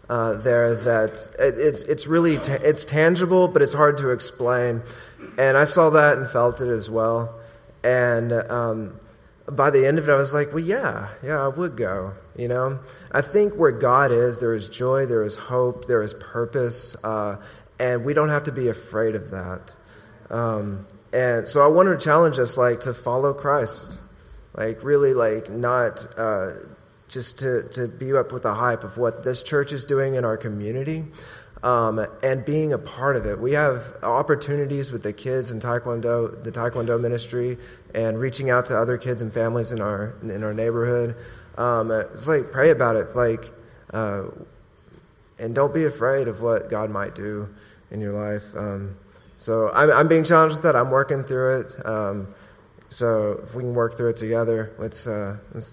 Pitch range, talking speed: 110-135 Hz, 185 wpm